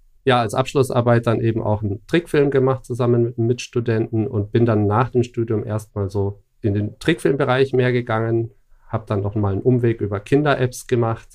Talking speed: 180 wpm